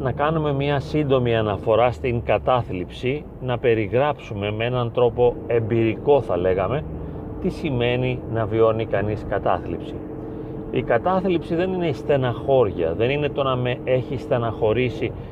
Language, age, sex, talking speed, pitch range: Greek, 40-59, male, 135 wpm, 115-145 Hz